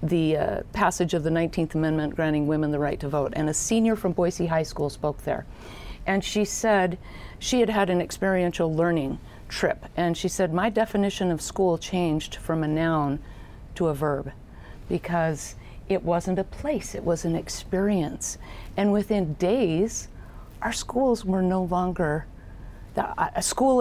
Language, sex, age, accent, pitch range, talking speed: English, female, 50-69, American, 170-210 Hz, 165 wpm